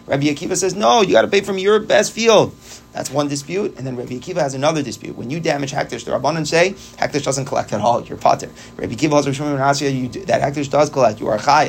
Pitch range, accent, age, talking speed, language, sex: 130-170 Hz, American, 30-49, 240 wpm, English, male